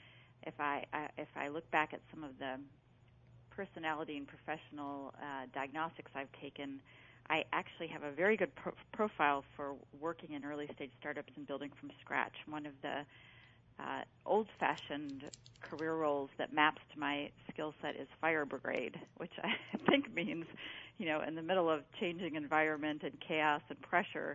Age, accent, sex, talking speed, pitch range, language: 40-59, American, female, 165 wpm, 135-155 Hz, English